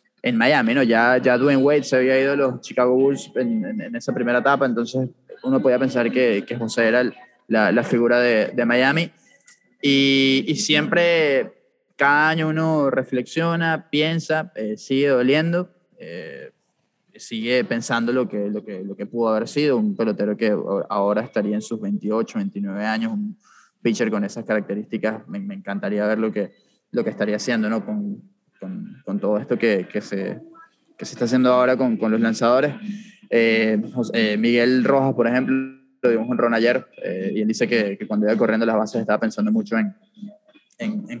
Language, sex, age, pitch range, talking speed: English, male, 20-39, 115-160 Hz, 190 wpm